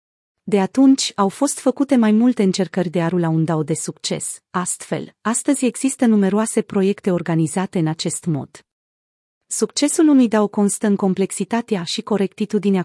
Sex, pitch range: female, 175-225 Hz